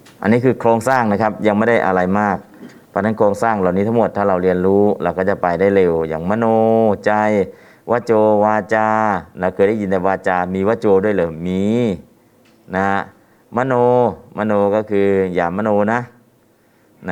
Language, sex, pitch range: Thai, male, 90-105 Hz